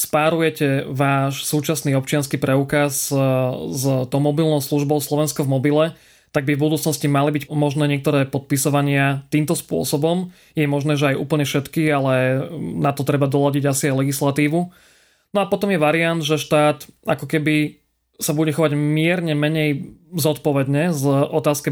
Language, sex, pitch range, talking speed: Slovak, male, 145-155 Hz, 150 wpm